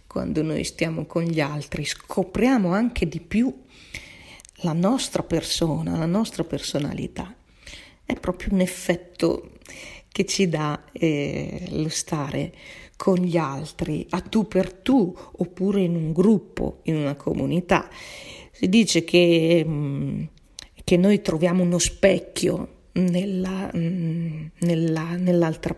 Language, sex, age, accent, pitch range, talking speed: Italian, female, 40-59, native, 160-185 Hz, 115 wpm